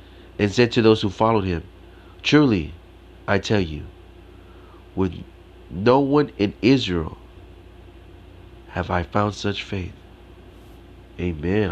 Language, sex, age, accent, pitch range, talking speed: English, male, 30-49, American, 90-105 Hz, 115 wpm